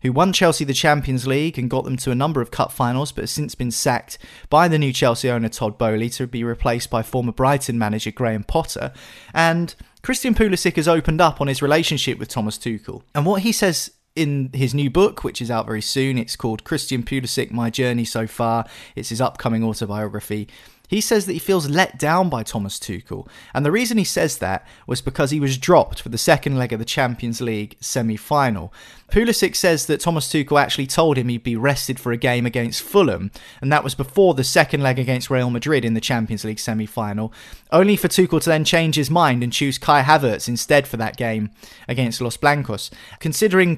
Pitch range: 115-155 Hz